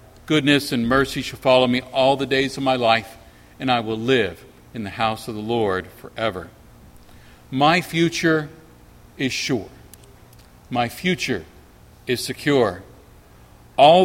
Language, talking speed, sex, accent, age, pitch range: English, 135 wpm, male, American, 50-69, 100-150 Hz